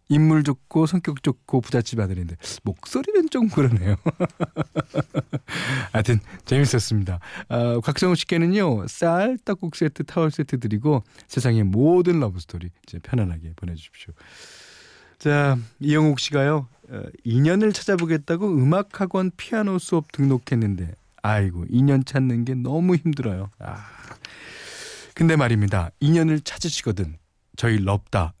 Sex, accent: male, native